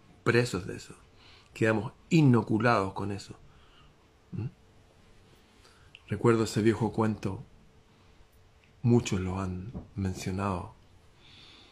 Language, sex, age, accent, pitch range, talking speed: Spanish, male, 40-59, Argentinian, 95-140 Hz, 80 wpm